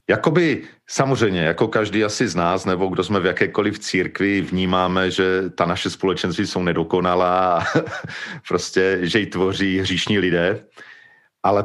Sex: male